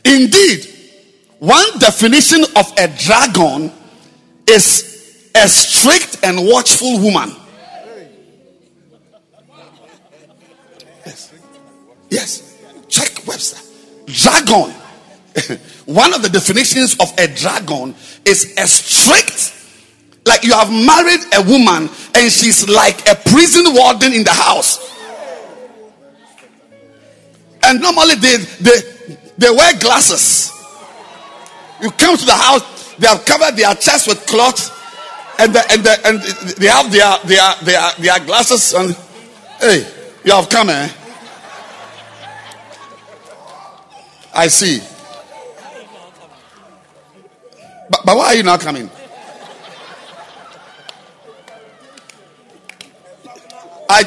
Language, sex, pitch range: English, male, 200-260 Hz